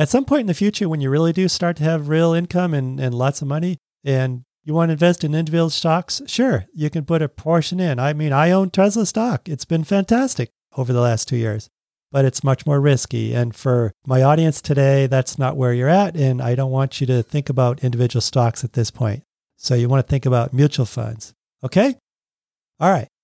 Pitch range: 125-160 Hz